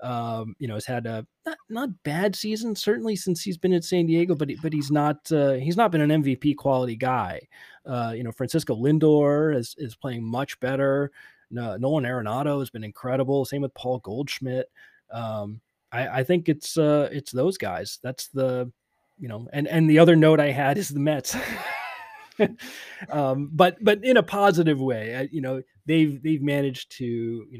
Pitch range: 110-150 Hz